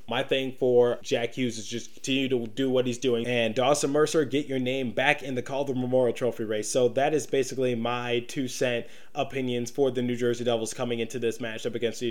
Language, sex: English, male